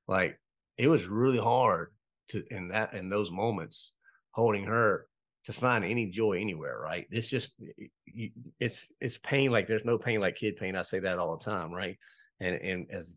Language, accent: English, American